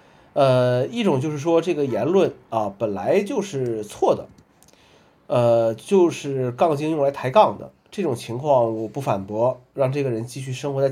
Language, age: Chinese, 30-49